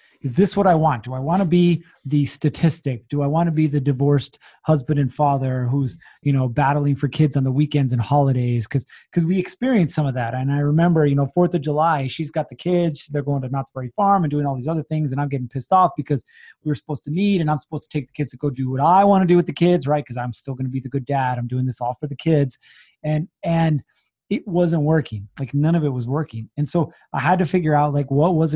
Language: English